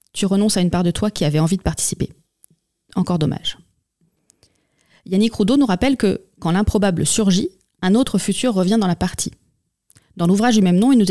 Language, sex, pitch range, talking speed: French, female, 175-215 Hz, 195 wpm